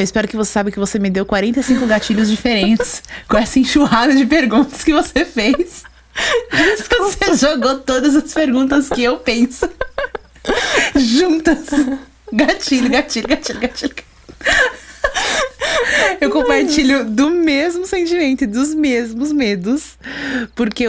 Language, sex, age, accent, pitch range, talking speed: Portuguese, female, 20-39, Brazilian, 180-255 Hz, 125 wpm